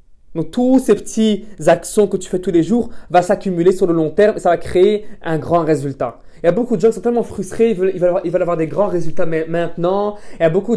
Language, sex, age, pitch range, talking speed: French, male, 20-39, 155-195 Hz, 280 wpm